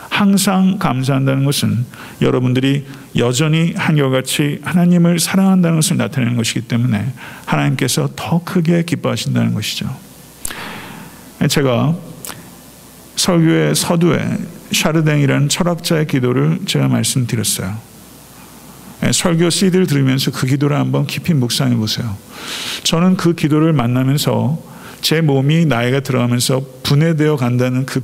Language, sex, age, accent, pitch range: Korean, male, 50-69, native, 130-165 Hz